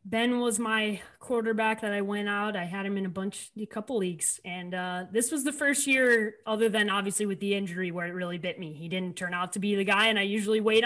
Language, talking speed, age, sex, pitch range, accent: English, 260 wpm, 30-49, female, 190-245 Hz, American